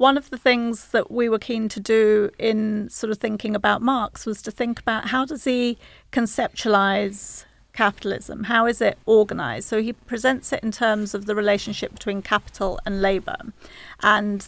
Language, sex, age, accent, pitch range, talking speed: English, female, 40-59, British, 205-235 Hz, 180 wpm